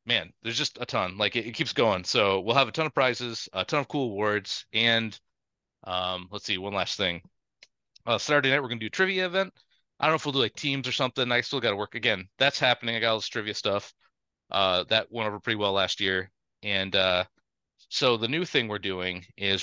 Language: English